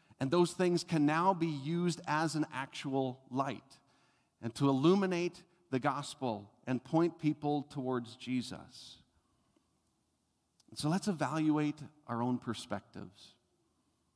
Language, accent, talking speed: English, American, 120 wpm